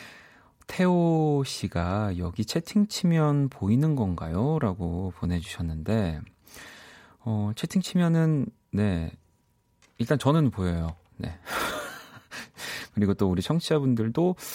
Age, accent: 30-49, native